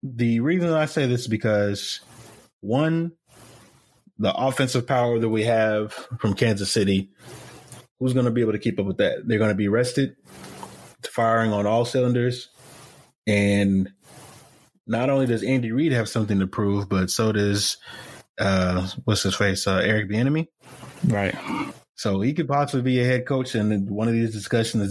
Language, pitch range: English, 100-125 Hz